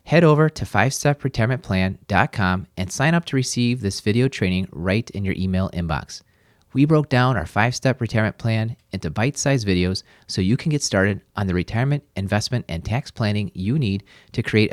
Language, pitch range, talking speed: English, 95-125 Hz, 175 wpm